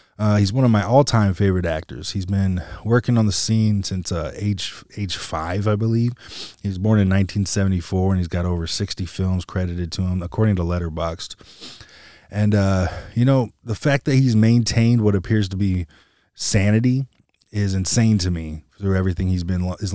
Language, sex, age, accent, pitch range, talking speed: English, male, 20-39, American, 90-105 Hz, 185 wpm